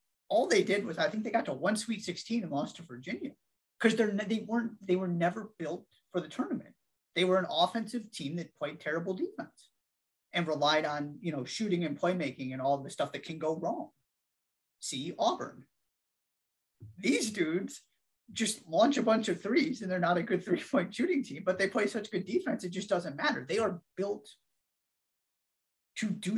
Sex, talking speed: male, 190 wpm